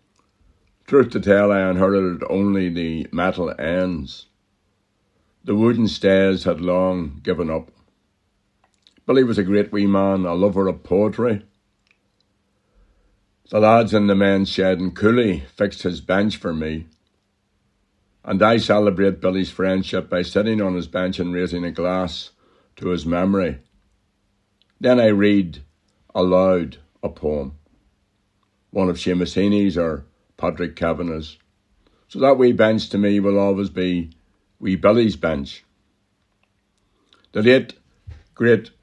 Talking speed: 130 wpm